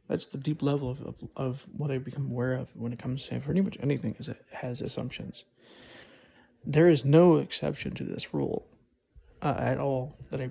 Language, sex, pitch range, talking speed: English, male, 125-150 Hz, 200 wpm